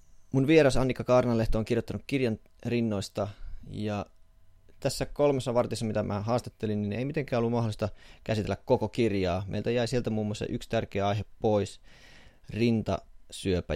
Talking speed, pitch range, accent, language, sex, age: 145 wpm, 90-120 Hz, native, Finnish, male, 30-49